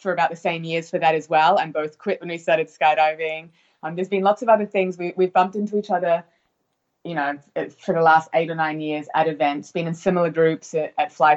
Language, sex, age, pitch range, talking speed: English, female, 20-39, 150-175 Hz, 245 wpm